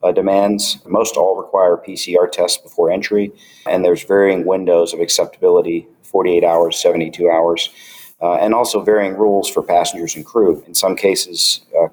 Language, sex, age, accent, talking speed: English, male, 50-69, American, 160 wpm